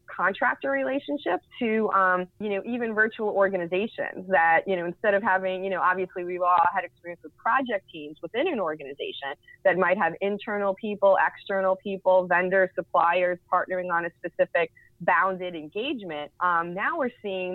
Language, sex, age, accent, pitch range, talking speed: English, female, 20-39, American, 180-210 Hz, 160 wpm